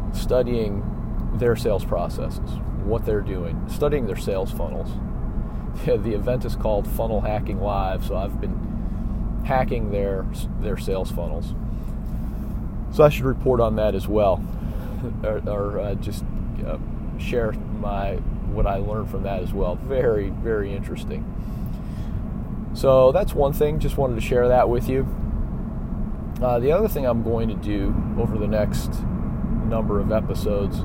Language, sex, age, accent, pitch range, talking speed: English, male, 40-59, American, 105-115 Hz, 145 wpm